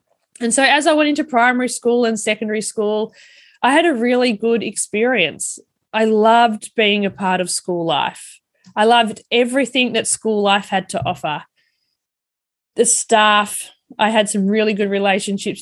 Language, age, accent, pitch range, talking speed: English, 20-39, Australian, 195-250 Hz, 160 wpm